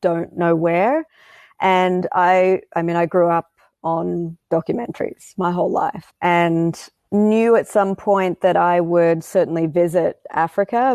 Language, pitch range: English, 165-195 Hz